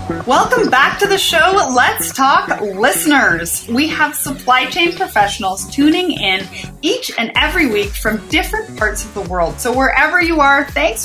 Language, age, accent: English, 30-49, American